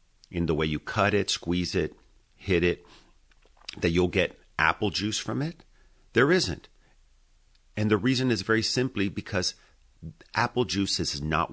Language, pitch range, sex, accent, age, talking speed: English, 80-105 Hz, male, American, 50-69, 155 wpm